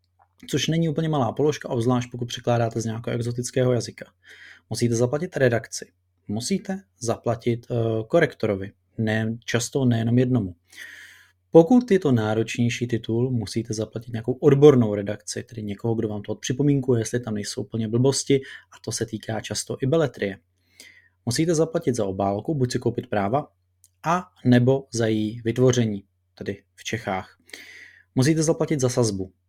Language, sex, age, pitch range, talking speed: Czech, male, 20-39, 105-125 Hz, 145 wpm